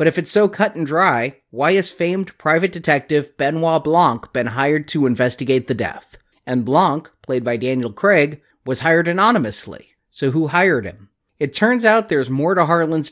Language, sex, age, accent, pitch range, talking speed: English, male, 30-49, American, 125-170 Hz, 185 wpm